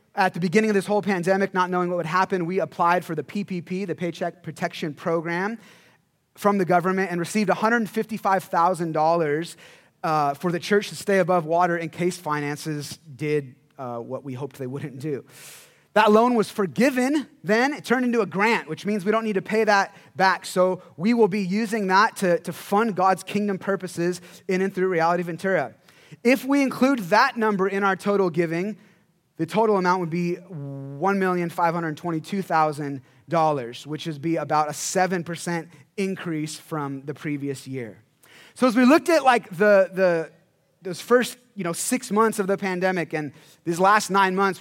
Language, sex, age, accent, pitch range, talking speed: English, male, 30-49, American, 160-200 Hz, 175 wpm